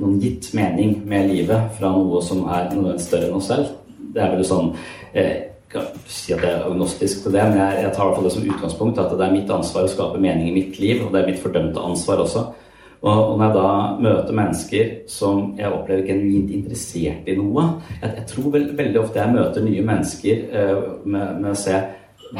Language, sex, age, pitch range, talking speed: English, male, 30-49, 95-105 Hz, 235 wpm